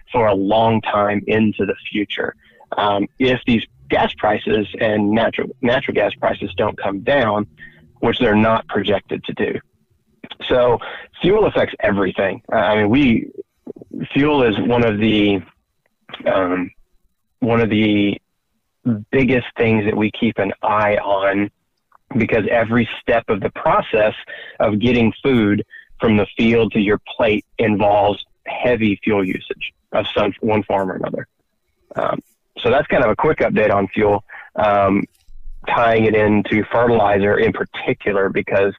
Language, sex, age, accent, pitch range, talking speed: English, male, 30-49, American, 105-115 Hz, 140 wpm